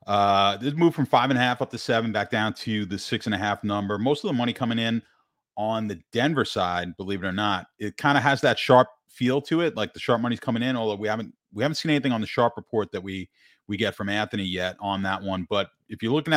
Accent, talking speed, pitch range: American, 270 wpm, 100-125 Hz